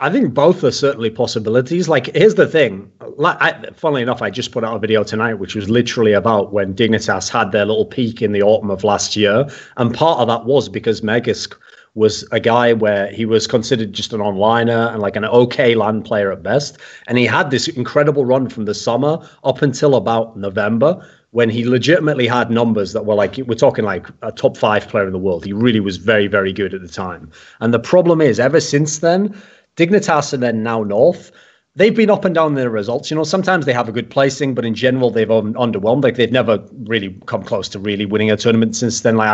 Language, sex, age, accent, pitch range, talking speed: English, male, 30-49, British, 105-135 Hz, 225 wpm